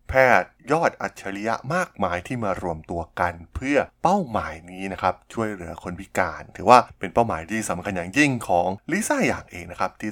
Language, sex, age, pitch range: Thai, male, 20-39, 90-110 Hz